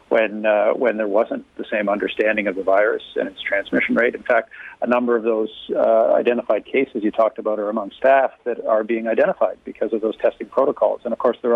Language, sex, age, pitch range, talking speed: English, male, 40-59, 110-130 Hz, 225 wpm